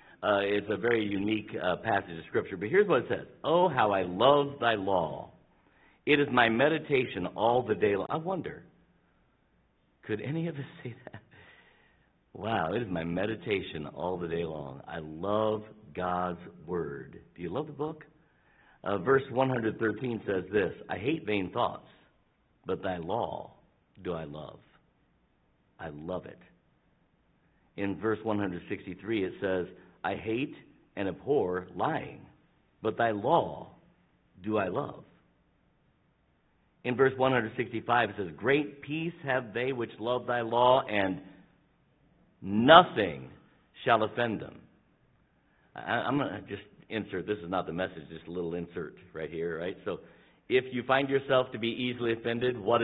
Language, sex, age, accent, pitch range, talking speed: English, male, 50-69, American, 95-130 Hz, 150 wpm